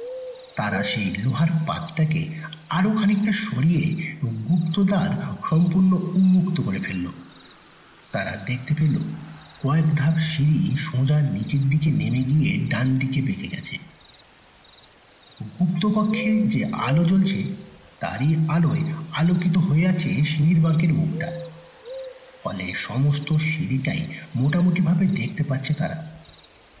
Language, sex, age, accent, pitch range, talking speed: Bengali, male, 50-69, native, 150-175 Hz, 80 wpm